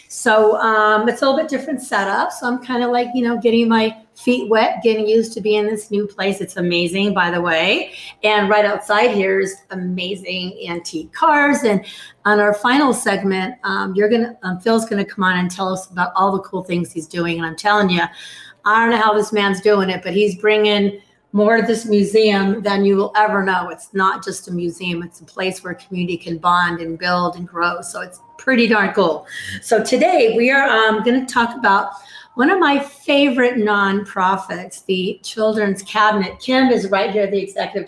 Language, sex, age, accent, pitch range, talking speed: English, female, 30-49, American, 190-225 Hz, 205 wpm